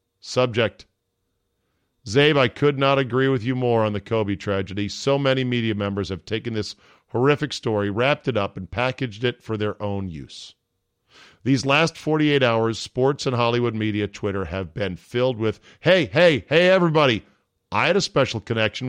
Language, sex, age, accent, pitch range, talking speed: English, male, 40-59, American, 100-135 Hz, 170 wpm